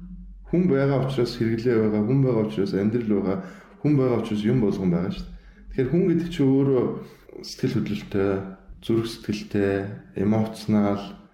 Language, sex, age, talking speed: English, male, 20-39, 140 wpm